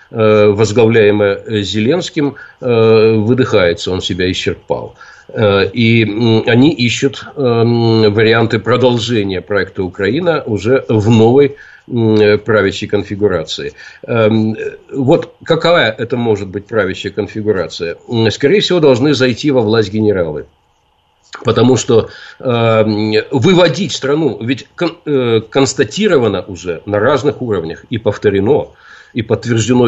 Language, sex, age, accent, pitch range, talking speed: Russian, male, 50-69, native, 110-135 Hz, 90 wpm